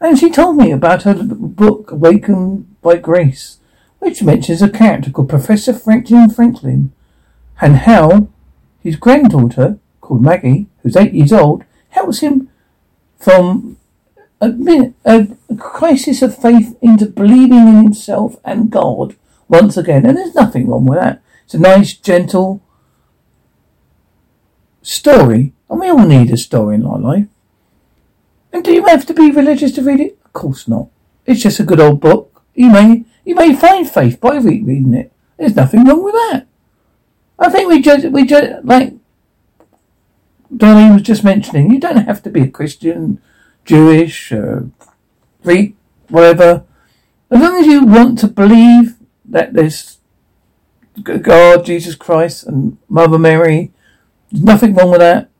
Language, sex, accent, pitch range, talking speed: English, male, British, 165-255 Hz, 150 wpm